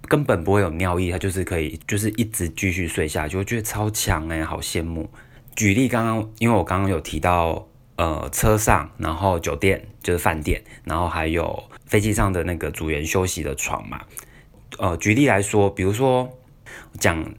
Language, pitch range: Chinese, 85-110 Hz